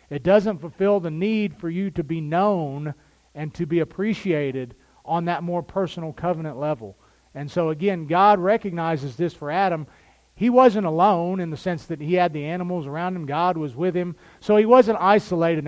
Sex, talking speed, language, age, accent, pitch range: male, 190 wpm, English, 40-59, American, 150-195 Hz